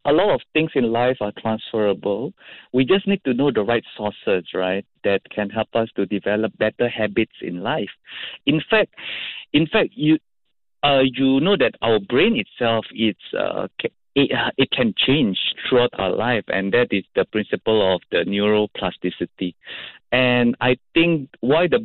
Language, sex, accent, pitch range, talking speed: English, male, Malaysian, 105-135 Hz, 170 wpm